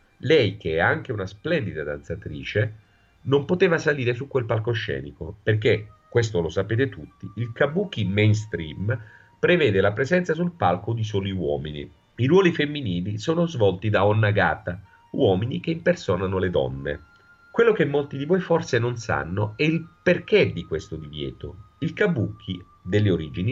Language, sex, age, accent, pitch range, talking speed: Italian, male, 40-59, native, 95-140 Hz, 150 wpm